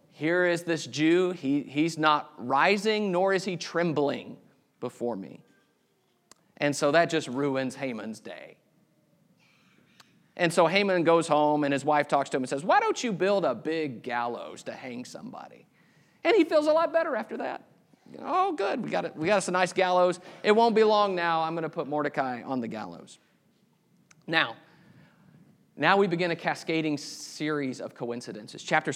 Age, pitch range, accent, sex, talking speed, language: 40-59, 150-185 Hz, American, male, 180 wpm, English